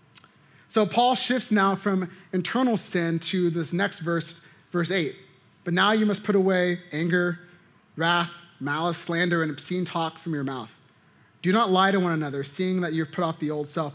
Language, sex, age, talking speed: English, male, 30-49, 185 wpm